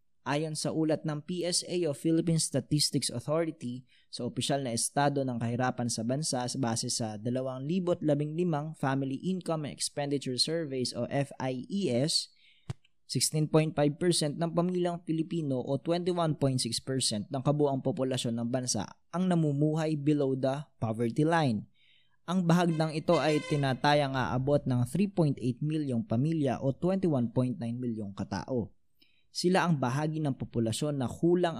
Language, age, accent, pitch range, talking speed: Filipino, 20-39, native, 130-160 Hz, 125 wpm